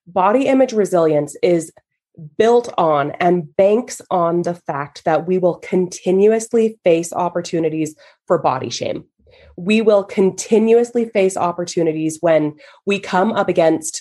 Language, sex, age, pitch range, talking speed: English, female, 20-39, 165-230 Hz, 130 wpm